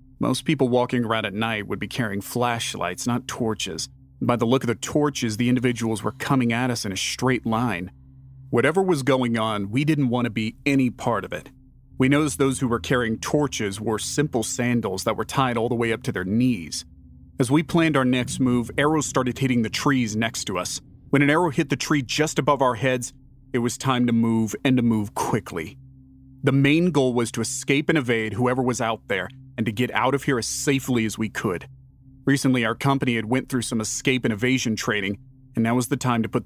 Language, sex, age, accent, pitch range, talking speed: English, male, 30-49, American, 110-135 Hz, 220 wpm